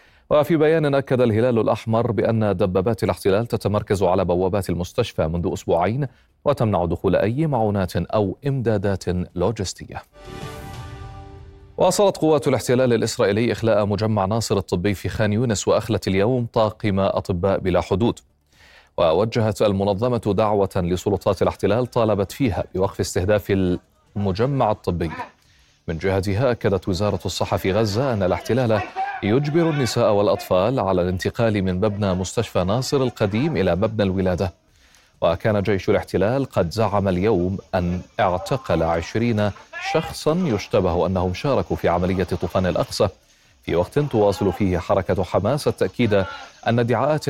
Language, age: Arabic, 30-49